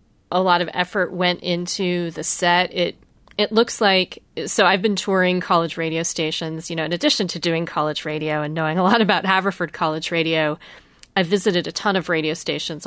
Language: English